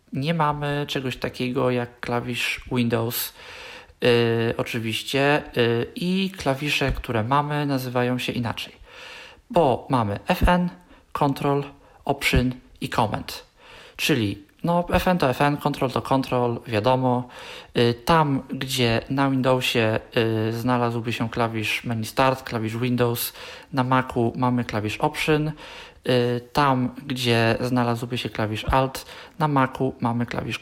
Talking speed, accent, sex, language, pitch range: 110 wpm, native, male, Polish, 120-135 Hz